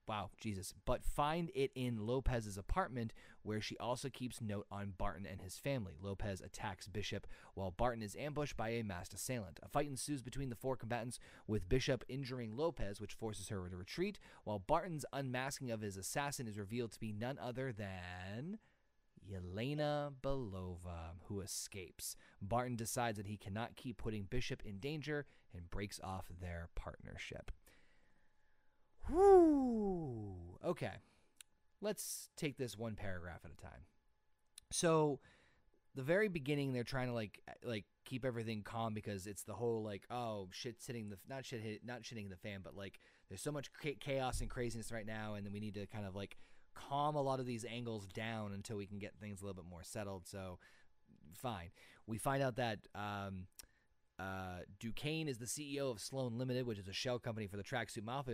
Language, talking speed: English, 180 wpm